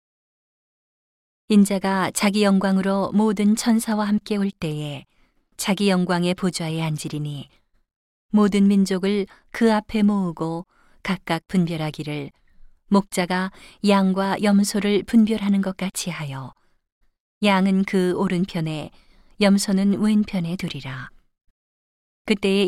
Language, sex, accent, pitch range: Korean, female, native, 170-205 Hz